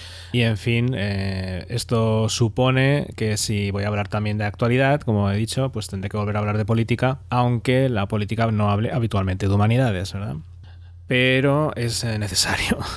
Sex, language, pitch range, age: male, English, 100-125 Hz, 20-39